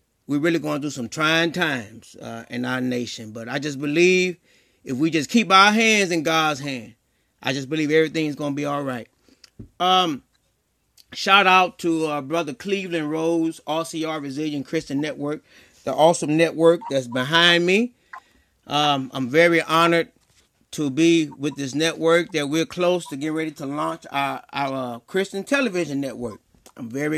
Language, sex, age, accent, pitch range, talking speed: English, male, 30-49, American, 140-170 Hz, 170 wpm